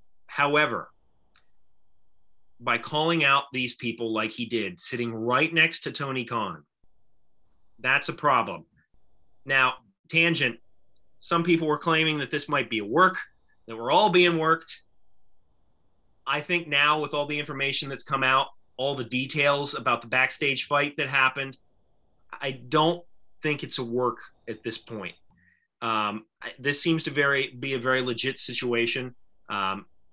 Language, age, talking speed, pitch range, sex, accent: English, 30-49, 145 wpm, 115-145 Hz, male, American